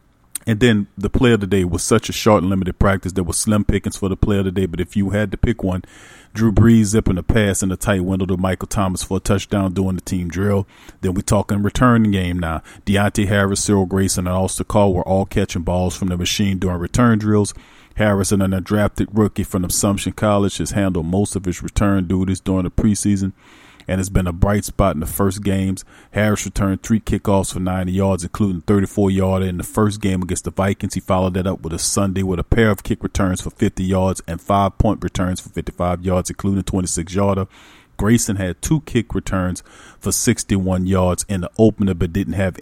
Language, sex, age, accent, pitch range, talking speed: English, male, 40-59, American, 95-105 Hz, 220 wpm